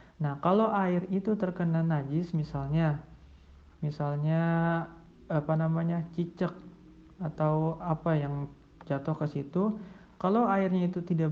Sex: male